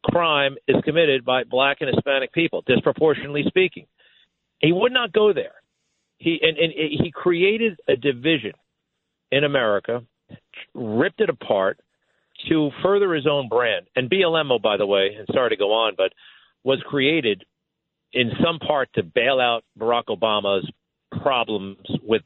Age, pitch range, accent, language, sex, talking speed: 50-69, 115-160 Hz, American, English, male, 150 wpm